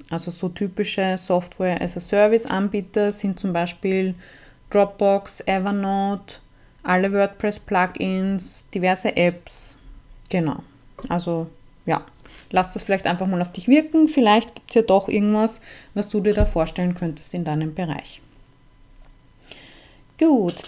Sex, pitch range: female, 185-230 Hz